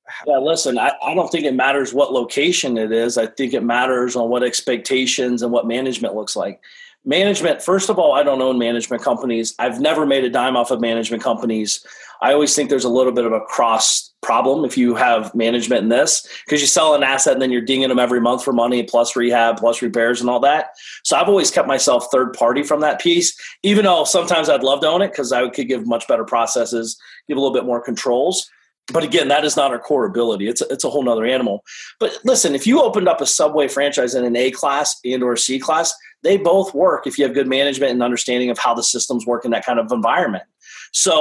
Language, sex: English, male